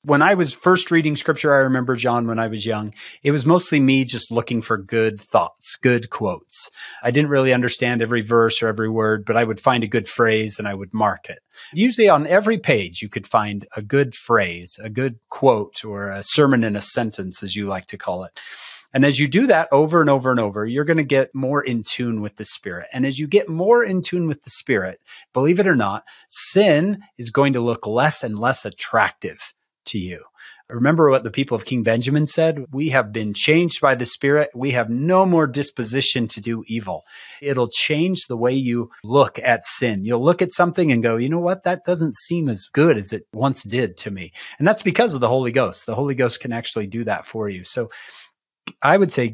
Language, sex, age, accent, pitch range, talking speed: English, male, 30-49, American, 115-155 Hz, 225 wpm